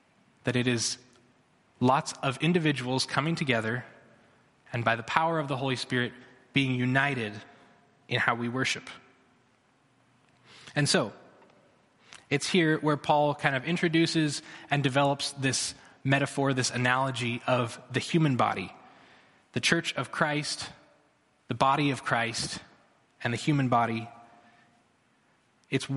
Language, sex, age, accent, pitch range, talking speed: English, male, 20-39, American, 125-150 Hz, 125 wpm